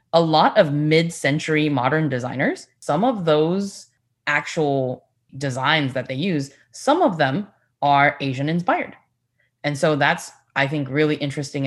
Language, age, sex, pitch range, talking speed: English, 10-29, female, 135-165 Hz, 135 wpm